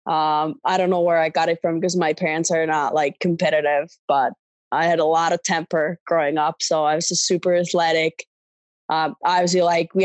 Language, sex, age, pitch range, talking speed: English, female, 20-39, 160-180 Hz, 210 wpm